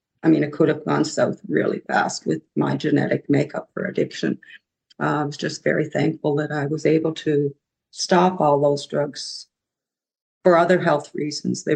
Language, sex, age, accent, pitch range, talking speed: English, female, 50-69, American, 150-180 Hz, 180 wpm